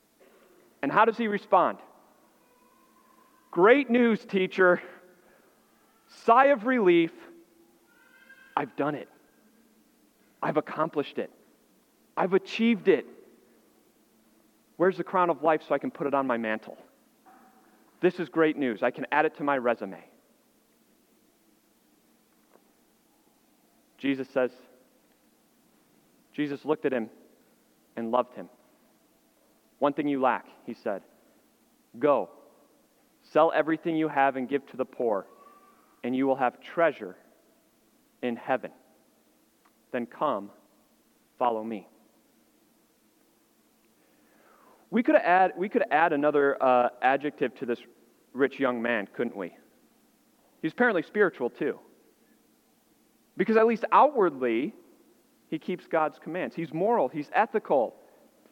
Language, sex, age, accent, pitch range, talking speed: English, male, 40-59, American, 130-200 Hz, 115 wpm